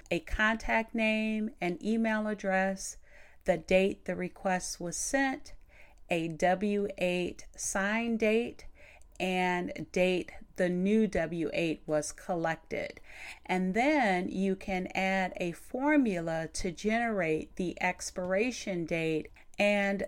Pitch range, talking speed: 175-210 Hz, 110 wpm